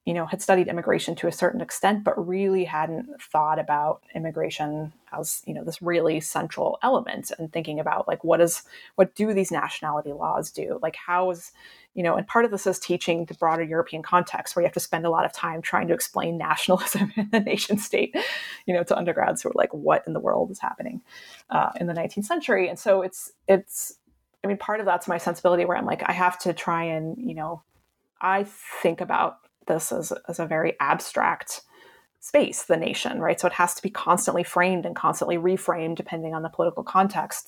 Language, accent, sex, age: English, American, female, 20-39